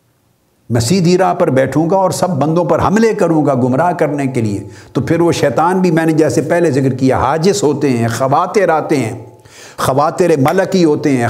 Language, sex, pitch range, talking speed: Urdu, male, 120-160 Hz, 200 wpm